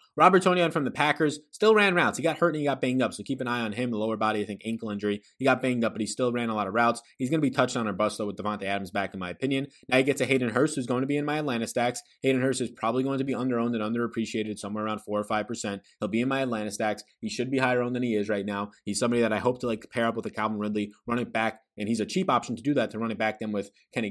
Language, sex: English, male